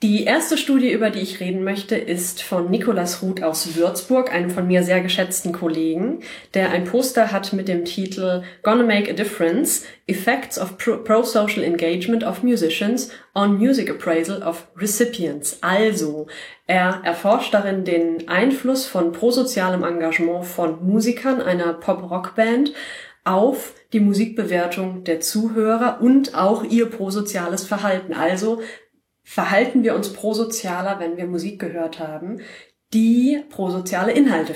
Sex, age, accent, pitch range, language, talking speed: female, 30-49, German, 170-225 Hz, German, 135 wpm